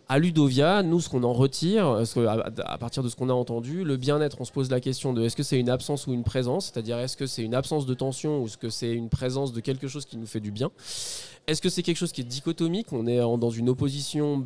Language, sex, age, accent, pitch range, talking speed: French, male, 20-39, French, 120-150 Hz, 270 wpm